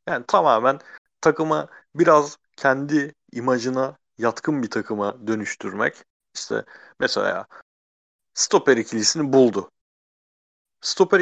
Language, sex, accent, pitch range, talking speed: Turkish, male, native, 110-155 Hz, 85 wpm